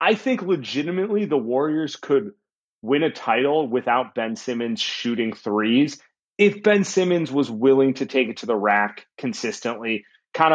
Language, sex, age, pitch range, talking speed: English, male, 30-49, 115-155 Hz, 155 wpm